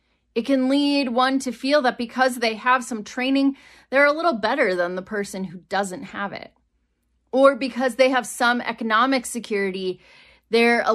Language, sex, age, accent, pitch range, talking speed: English, female, 30-49, American, 190-245 Hz, 175 wpm